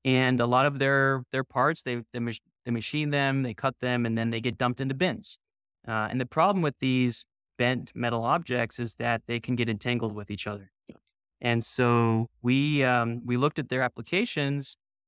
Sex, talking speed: male, 190 wpm